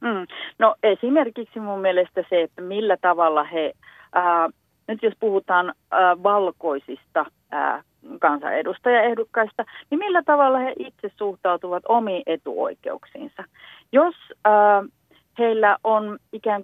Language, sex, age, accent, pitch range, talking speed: Finnish, female, 40-59, native, 180-235 Hz, 110 wpm